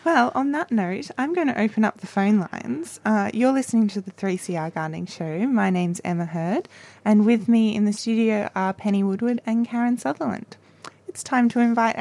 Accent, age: Australian, 20-39